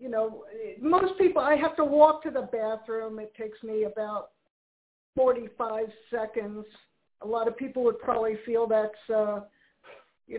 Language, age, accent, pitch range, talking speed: English, 50-69, American, 215-250 Hz, 160 wpm